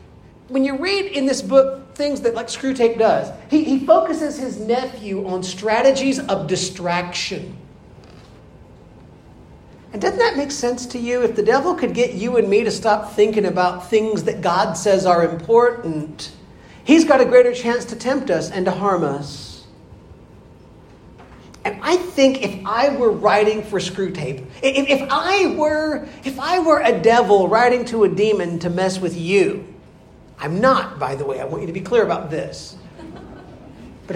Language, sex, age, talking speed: English, male, 40-59, 170 wpm